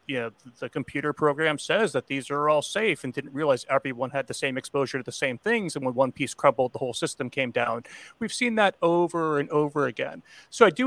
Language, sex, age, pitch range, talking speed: English, male, 40-59, 135-185 Hz, 230 wpm